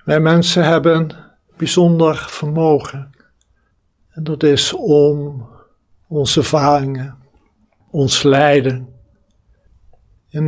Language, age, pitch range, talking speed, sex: Dutch, 60-79, 95-145 Hz, 80 wpm, male